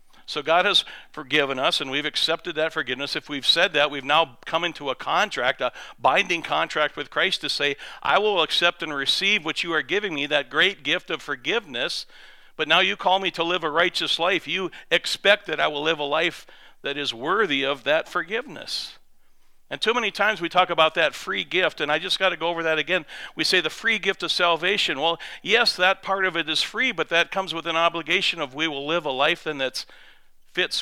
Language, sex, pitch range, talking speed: English, male, 145-185 Hz, 225 wpm